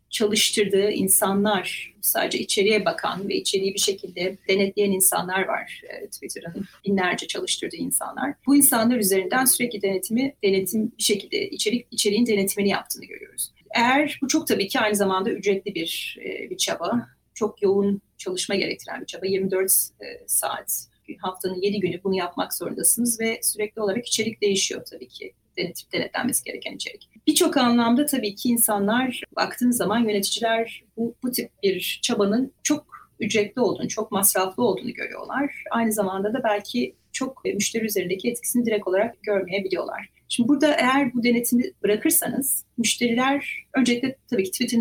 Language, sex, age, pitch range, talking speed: Turkish, female, 30-49, 200-250 Hz, 145 wpm